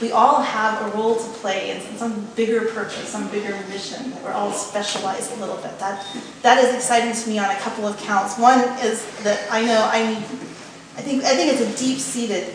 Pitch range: 205-250 Hz